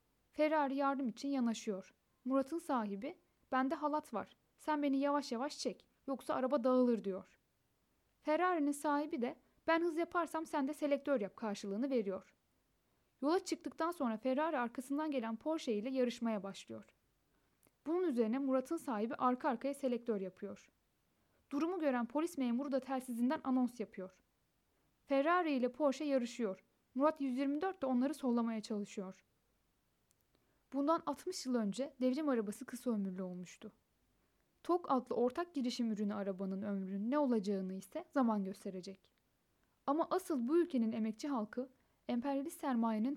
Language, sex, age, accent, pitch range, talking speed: Turkish, female, 10-29, native, 220-290 Hz, 130 wpm